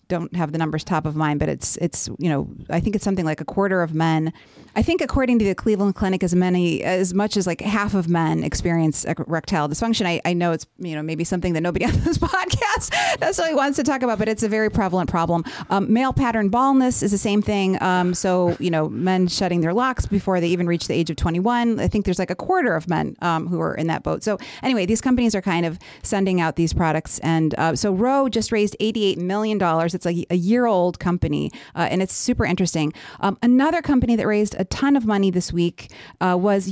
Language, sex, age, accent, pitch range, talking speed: English, female, 30-49, American, 175-225 Hz, 240 wpm